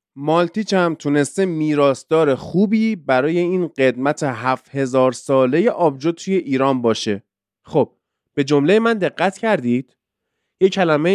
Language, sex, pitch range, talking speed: Persian, male, 135-205 Hz, 130 wpm